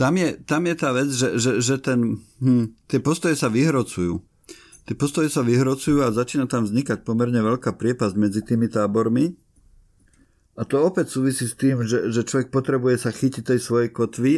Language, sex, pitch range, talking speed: Slovak, male, 105-135 Hz, 185 wpm